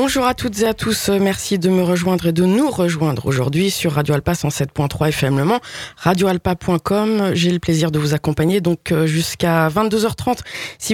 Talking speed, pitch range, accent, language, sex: 180 wpm, 160-195 Hz, French, French, female